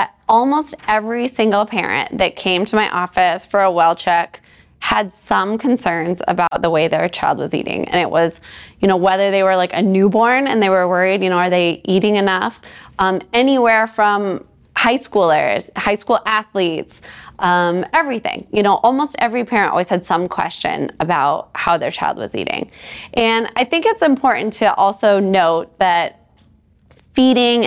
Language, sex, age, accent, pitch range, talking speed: English, female, 20-39, American, 185-240 Hz, 170 wpm